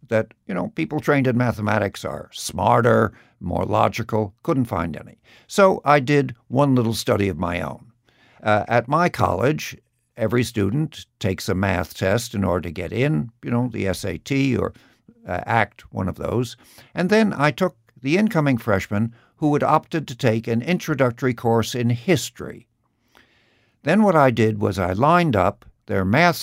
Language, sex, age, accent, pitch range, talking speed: English, male, 60-79, American, 105-145 Hz, 170 wpm